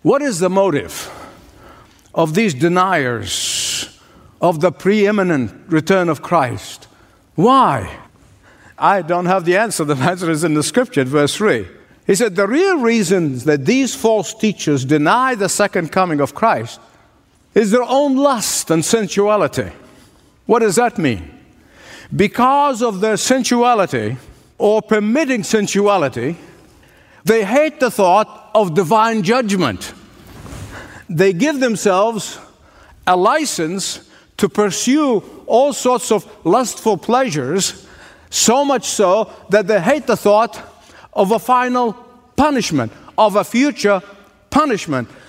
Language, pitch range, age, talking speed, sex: English, 175-240 Hz, 50-69, 125 wpm, male